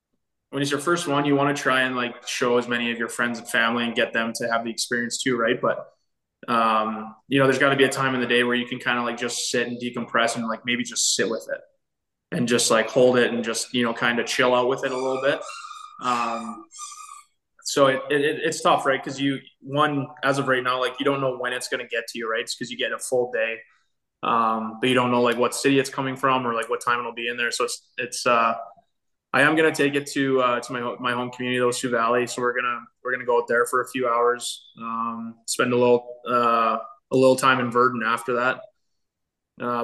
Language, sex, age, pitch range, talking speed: English, male, 20-39, 120-130 Hz, 260 wpm